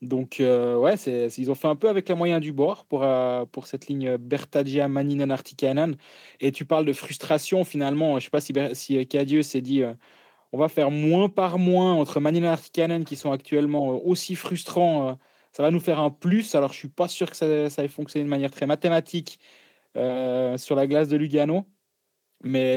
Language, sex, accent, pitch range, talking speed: French, male, French, 130-160 Hz, 210 wpm